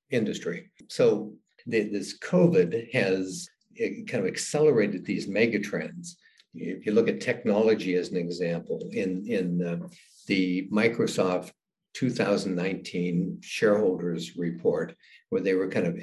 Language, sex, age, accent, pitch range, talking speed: English, male, 60-79, American, 90-110 Hz, 125 wpm